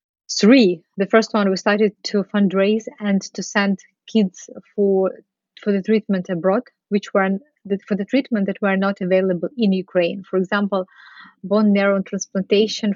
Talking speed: 155 wpm